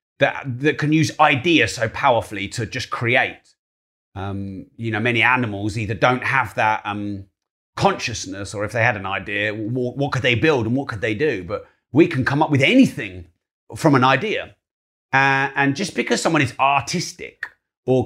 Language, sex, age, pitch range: English, male, 30-49, 105-150 Hz